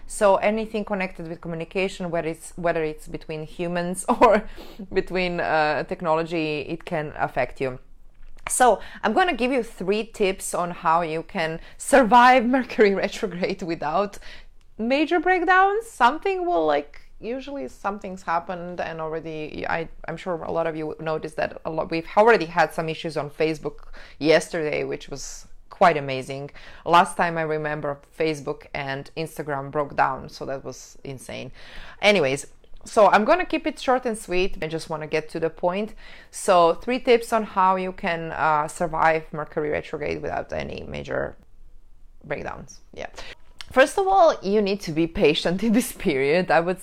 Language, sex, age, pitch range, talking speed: English, female, 20-39, 160-215 Hz, 160 wpm